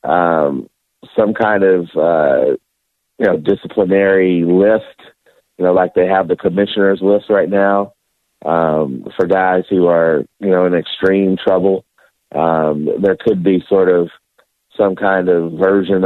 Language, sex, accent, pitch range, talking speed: English, male, American, 90-100 Hz, 145 wpm